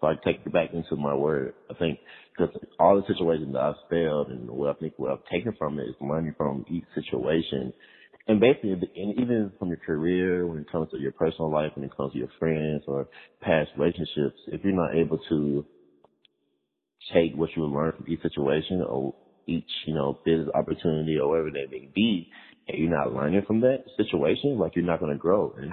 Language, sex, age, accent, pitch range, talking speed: English, male, 30-49, American, 75-85 Hz, 210 wpm